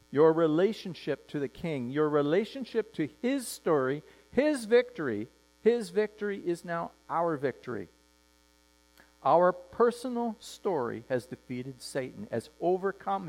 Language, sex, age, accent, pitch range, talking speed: English, male, 50-69, American, 120-175 Hz, 115 wpm